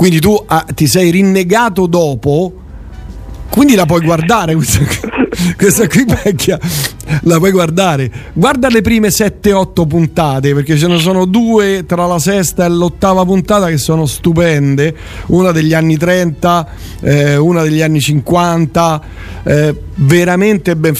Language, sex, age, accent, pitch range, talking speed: Italian, male, 40-59, native, 140-185 Hz, 135 wpm